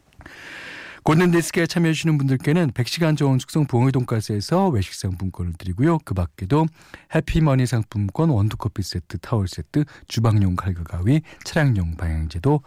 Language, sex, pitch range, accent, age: Korean, male, 95-150 Hz, native, 40-59